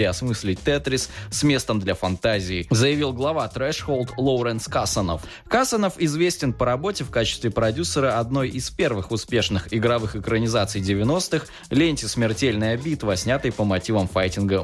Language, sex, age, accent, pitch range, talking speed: Russian, male, 20-39, native, 105-135 Hz, 130 wpm